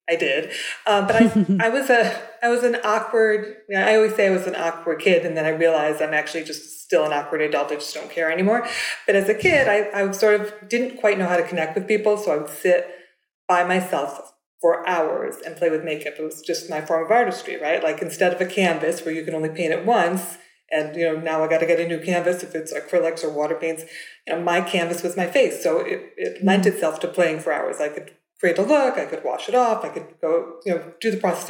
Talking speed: 260 wpm